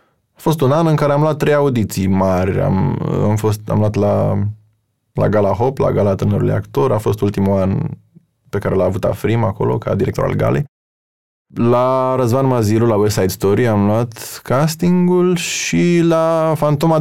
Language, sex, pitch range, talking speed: Romanian, male, 110-160 Hz, 180 wpm